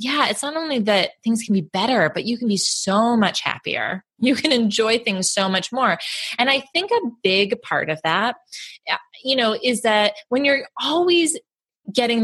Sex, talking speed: female, 190 wpm